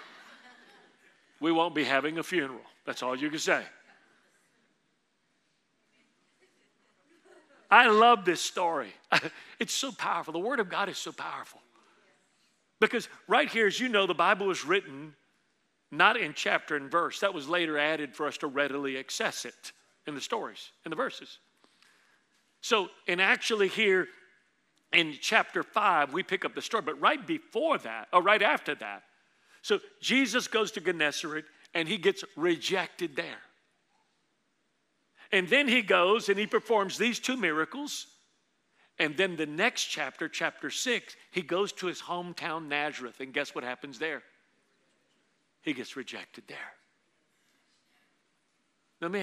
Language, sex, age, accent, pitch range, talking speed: English, male, 40-59, American, 155-225 Hz, 145 wpm